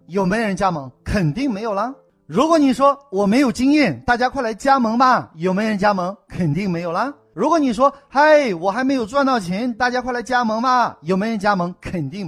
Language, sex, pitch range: Chinese, male, 180-265 Hz